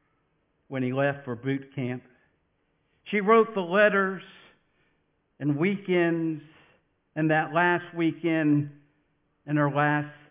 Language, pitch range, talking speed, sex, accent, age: English, 120-155 Hz, 110 wpm, male, American, 60-79